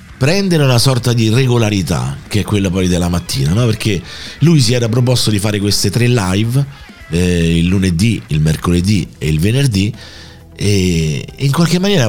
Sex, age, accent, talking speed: male, 50-69, native, 170 wpm